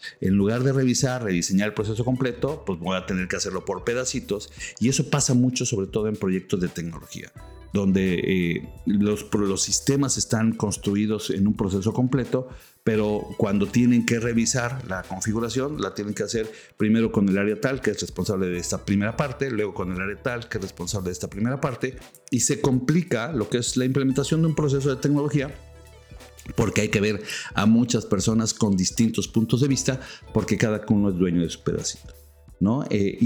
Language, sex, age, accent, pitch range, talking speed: Spanish, male, 50-69, Mexican, 100-130 Hz, 195 wpm